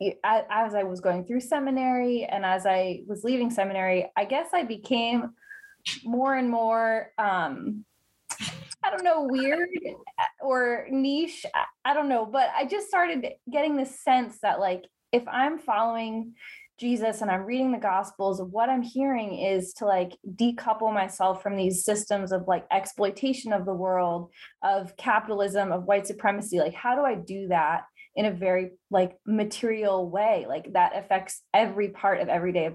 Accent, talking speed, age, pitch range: American, 165 wpm, 20-39, 190-245 Hz